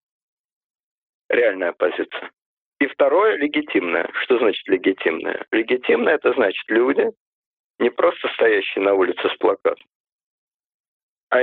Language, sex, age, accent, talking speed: Russian, male, 50-69, native, 115 wpm